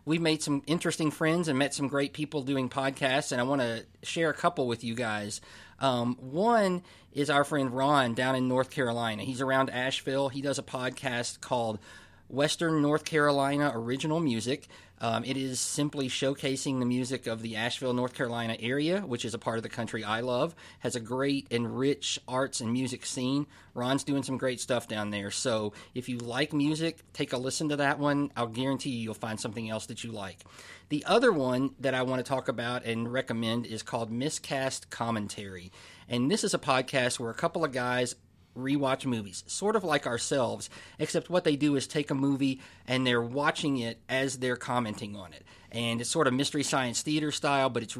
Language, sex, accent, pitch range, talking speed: English, male, American, 115-140 Hz, 205 wpm